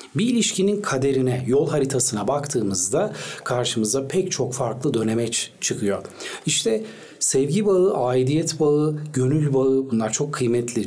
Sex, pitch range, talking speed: male, 125-165 Hz, 120 wpm